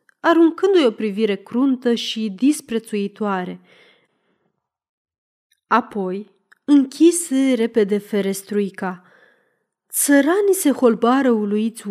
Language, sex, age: Romanian, female, 20-39